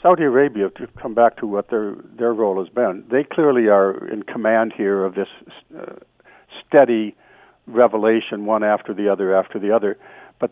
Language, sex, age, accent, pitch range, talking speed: English, male, 60-79, American, 105-125 Hz, 175 wpm